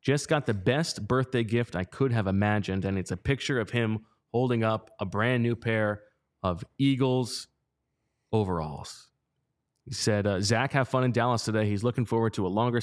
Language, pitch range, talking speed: English, 110-135 Hz, 185 wpm